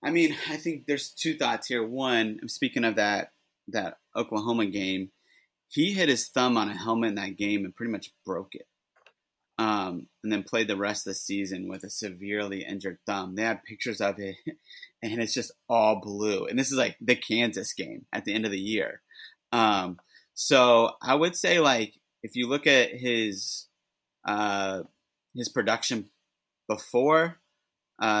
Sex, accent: male, American